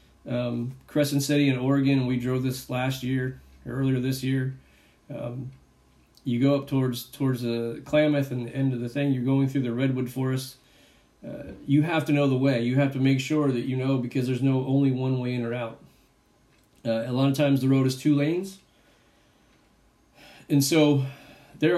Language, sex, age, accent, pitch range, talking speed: English, male, 40-59, American, 120-140 Hz, 200 wpm